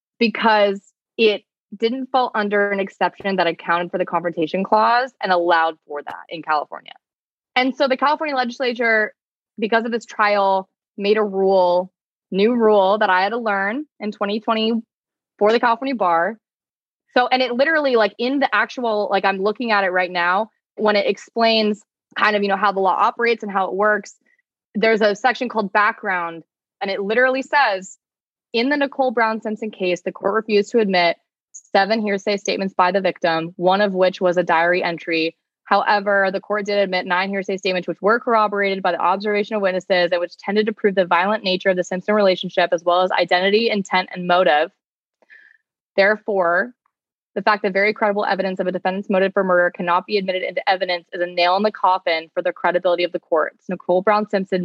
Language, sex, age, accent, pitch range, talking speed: English, female, 20-39, American, 180-220 Hz, 190 wpm